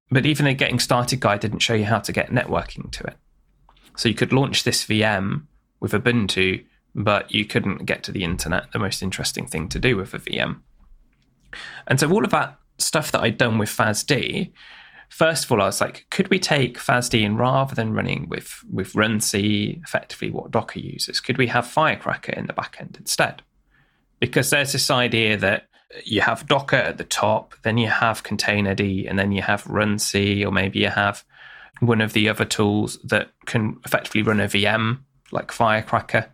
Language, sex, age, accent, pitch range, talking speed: English, male, 20-39, British, 105-135 Hz, 195 wpm